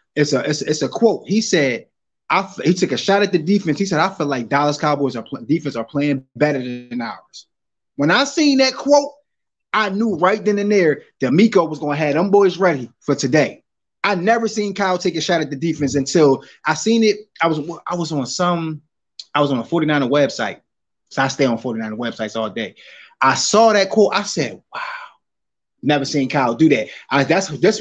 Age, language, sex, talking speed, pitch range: 20-39, English, male, 220 wpm, 145-200 Hz